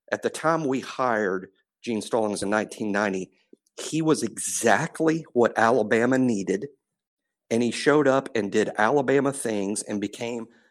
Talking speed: 140 wpm